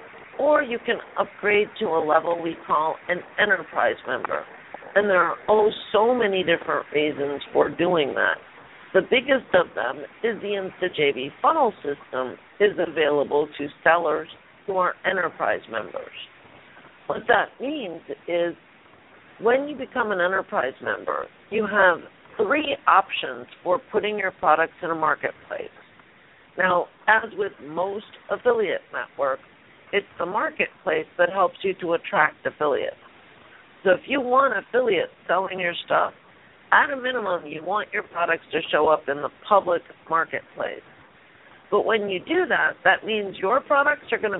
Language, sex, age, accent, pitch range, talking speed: English, female, 50-69, American, 170-270 Hz, 145 wpm